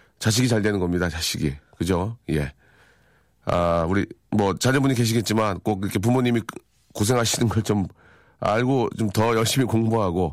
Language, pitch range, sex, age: Korean, 95-130 Hz, male, 40-59